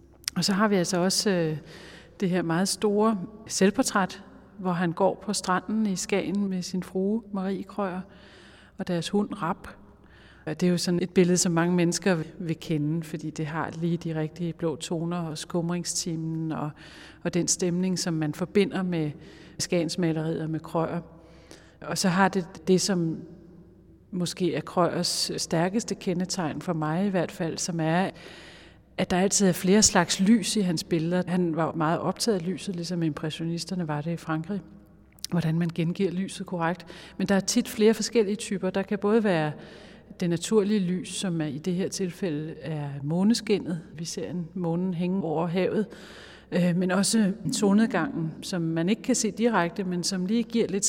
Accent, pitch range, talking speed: native, 165-195 Hz, 175 wpm